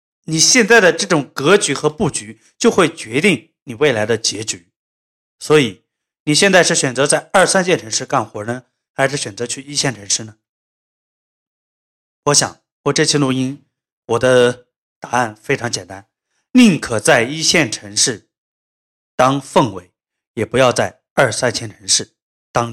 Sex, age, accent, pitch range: male, 20-39, native, 110-155 Hz